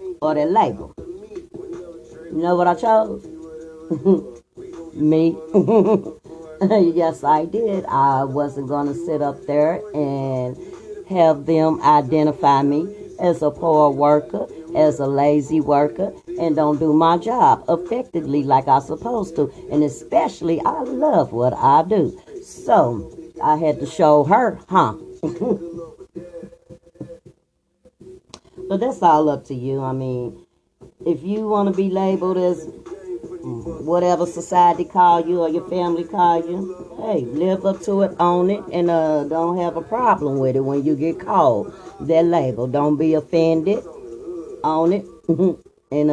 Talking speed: 135 wpm